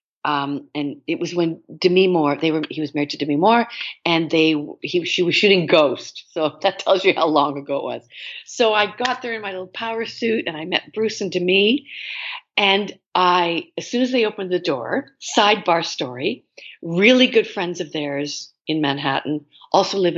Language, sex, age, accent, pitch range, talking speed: English, female, 50-69, American, 145-190 Hz, 195 wpm